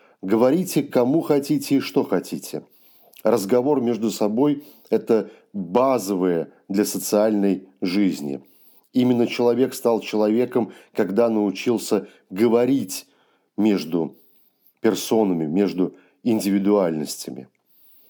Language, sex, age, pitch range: Russian, male, 40-59, 100-120 Hz